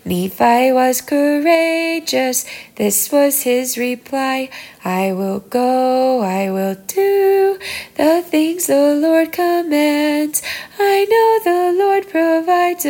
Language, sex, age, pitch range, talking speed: English, female, 10-29, 210-330 Hz, 105 wpm